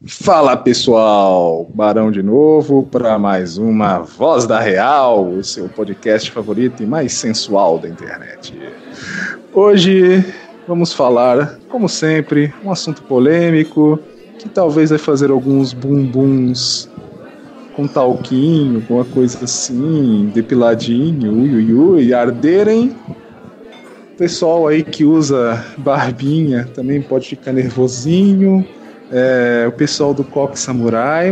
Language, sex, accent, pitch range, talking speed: Portuguese, male, Brazilian, 125-175 Hz, 115 wpm